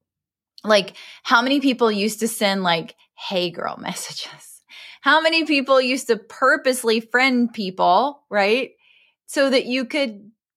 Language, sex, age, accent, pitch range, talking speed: English, female, 20-39, American, 195-255 Hz, 135 wpm